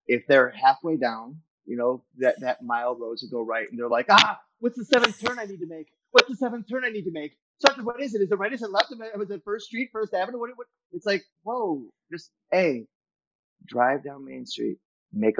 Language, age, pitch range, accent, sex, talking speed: English, 30-49, 135-210 Hz, American, male, 240 wpm